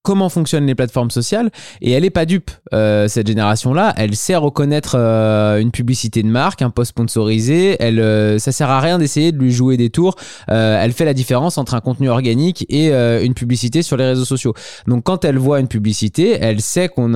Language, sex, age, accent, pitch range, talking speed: French, male, 20-39, French, 115-155 Hz, 220 wpm